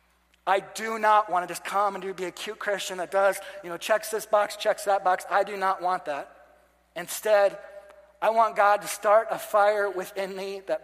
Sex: male